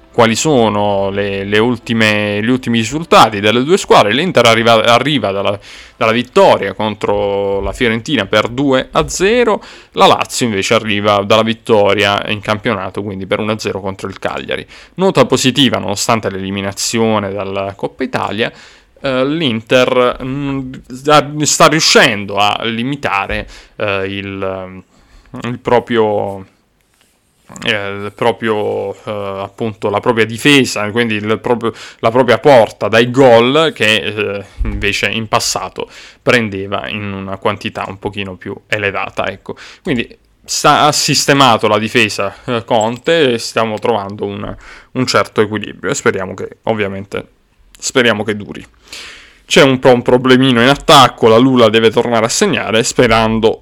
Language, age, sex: Italian, 20-39, male